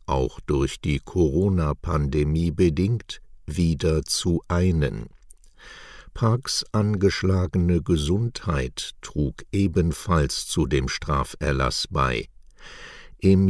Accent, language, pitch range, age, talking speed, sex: German, German, 75-95 Hz, 60-79, 80 wpm, male